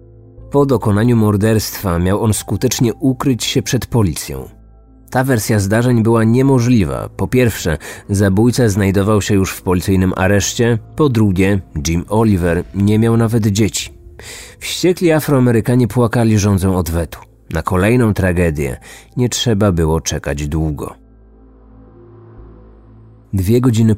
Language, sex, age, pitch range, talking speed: Polish, male, 40-59, 95-120 Hz, 120 wpm